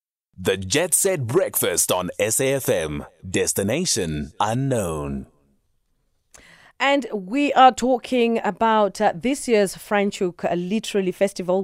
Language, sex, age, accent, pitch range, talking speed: English, female, 30-49, South African, 165-195 Hz, 110 wpm